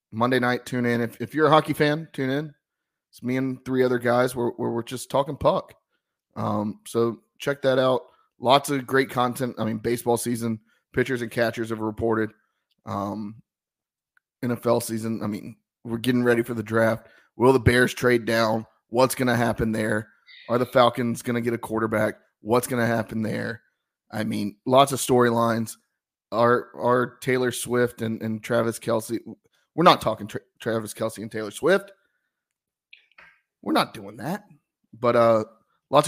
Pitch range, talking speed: 110-130 Hz, 175 wpm